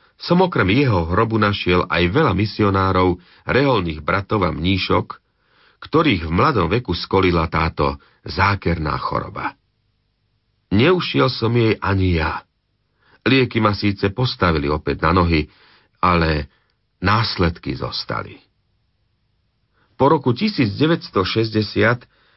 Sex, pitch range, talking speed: male, 85-110 Hz, 100 wpm